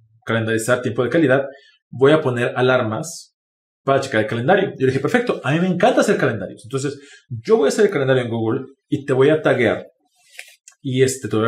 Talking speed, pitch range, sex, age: 215 wpm, 125-195 Hz, male, 30-49